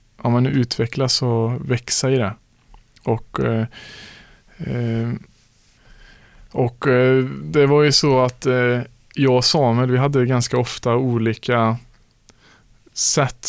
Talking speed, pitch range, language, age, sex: 115 wpm, 115-125 Hz, Swedish, 20-39, male